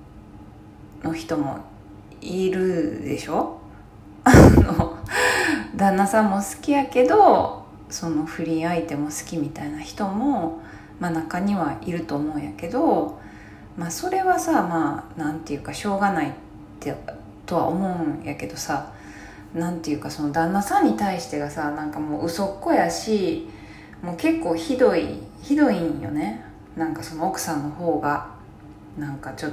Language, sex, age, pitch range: Japanese, female, 20-39, 110-180 Hz